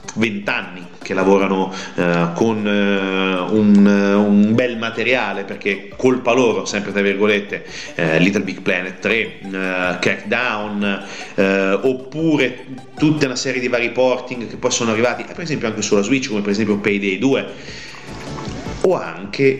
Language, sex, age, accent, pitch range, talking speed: Italian, male, 30-49, native, 100-130 Hz, 150 wpm